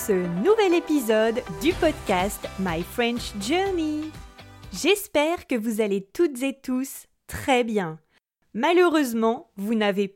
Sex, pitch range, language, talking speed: female, 210-280 Hz, French, 130 wpm